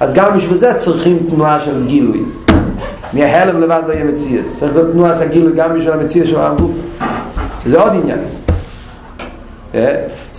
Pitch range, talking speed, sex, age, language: 145-185 Hz, 175 wpm, male, 50-69, Hebrew